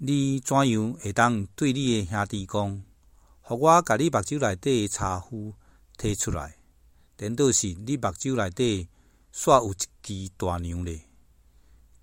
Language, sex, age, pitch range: Chinese, male, 60-79, 85-120 Hz